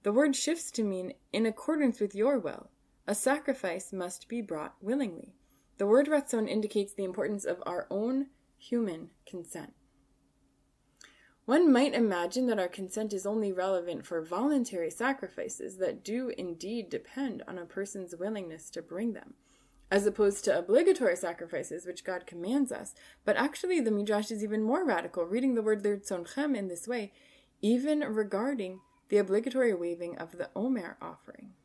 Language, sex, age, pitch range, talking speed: English, female, 20-39, 180-245 Hz, 155 wpm